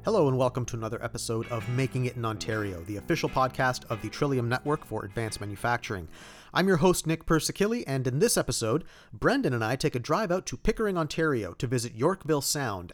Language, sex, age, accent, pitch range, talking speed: English, male, 40-59, American, 110-155 Hz, 205 wpm